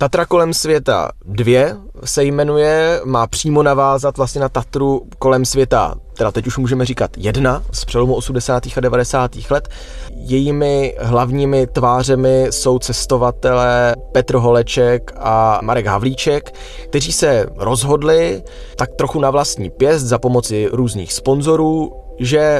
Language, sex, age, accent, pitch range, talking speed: Czech, male, 20-39, native, 120-145 Hz, 130 wpm